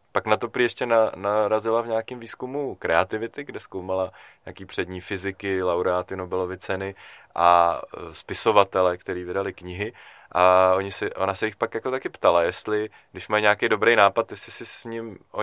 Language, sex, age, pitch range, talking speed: Czech, male, 20-39, 95-115 Hz, 170 wpm